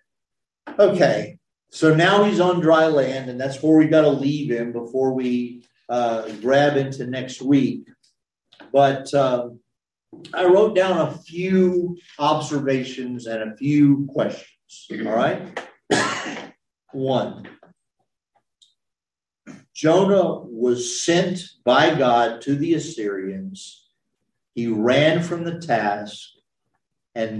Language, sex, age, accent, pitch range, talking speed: English, male, 50-69, American, 105-140 Hz, 110 wpm